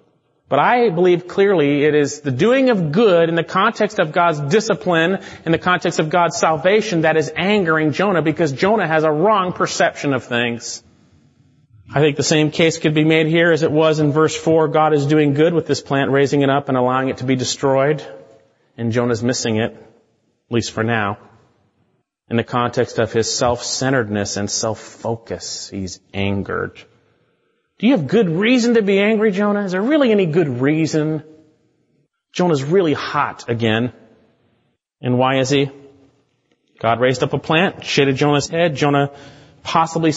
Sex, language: male, English